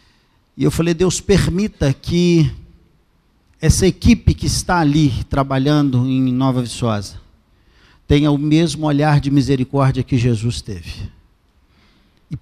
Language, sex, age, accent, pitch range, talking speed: Portuguese, male, 50-69, Brazilian, 130-210 Hz, 120 wpm